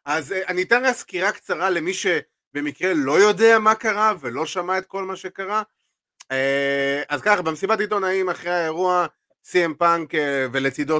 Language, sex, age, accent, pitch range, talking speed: Hebrew, male, 30-49, native, 135-170 Hz, 140 wpm